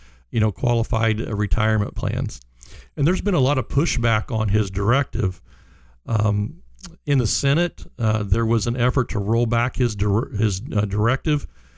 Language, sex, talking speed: English, male, 160 wpm